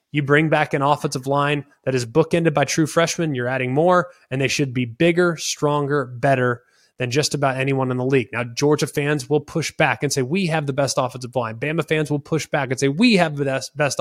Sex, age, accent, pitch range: male, 20-39, American, 130-160 Hz